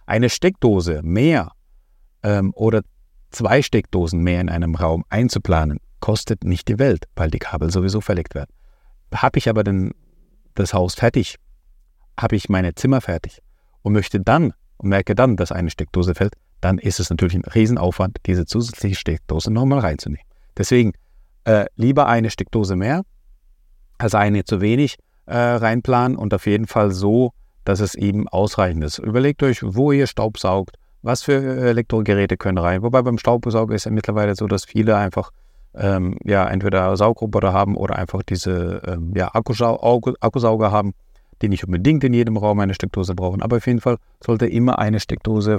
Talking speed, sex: 165 wpm, male